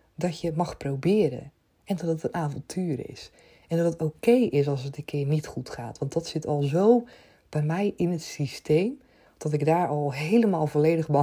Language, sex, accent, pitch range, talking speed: Dutch, female, Dutch, 150-185 Hz, 210 wpm